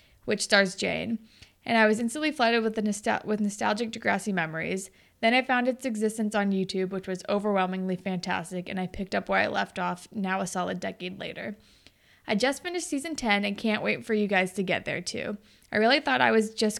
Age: 20-39